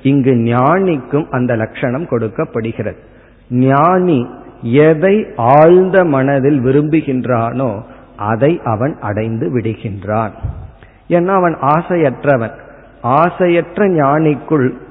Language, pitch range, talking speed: Tamil, 120-150 Hz, 75 wpm